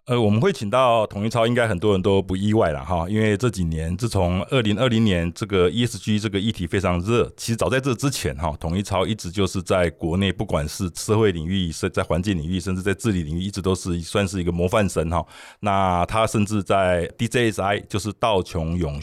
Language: Chinese